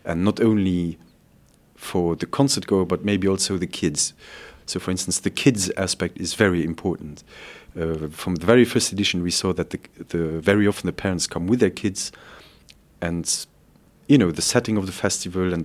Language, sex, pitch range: English, male, 85-100 Hz